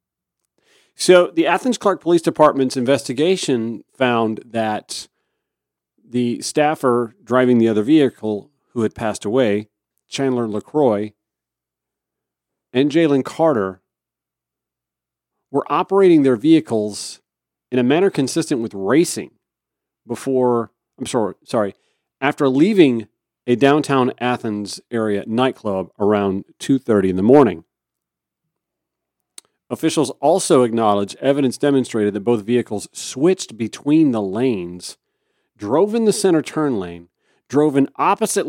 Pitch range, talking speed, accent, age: 110-150 Hz, 110 wpm, American, 40-59